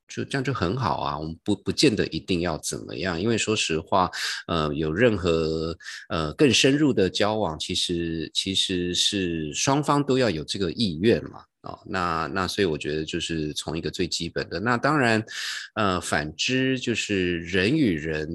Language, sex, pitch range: Chinese, male, 85-120 Hz